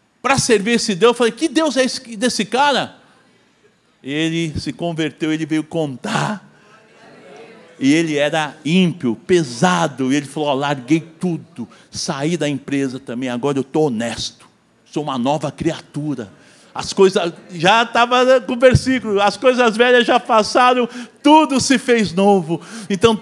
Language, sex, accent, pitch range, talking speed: Portuguese, male, Brazilian, 165-250 Hz, 145 wpm